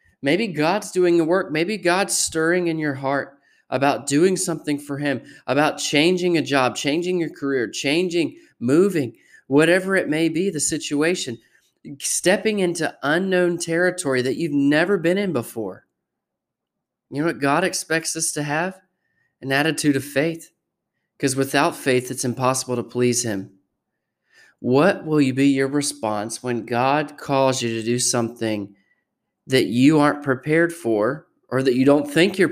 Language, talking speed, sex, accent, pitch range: English, 155 wpm, male, American, 120-160 Hz